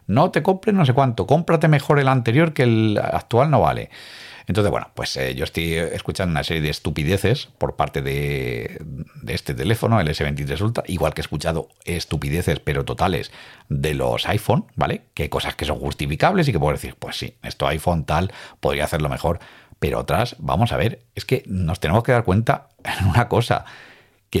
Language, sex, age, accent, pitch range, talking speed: Spanish, male, 50-69, Spanish, 80-125 Hz, 195 wpm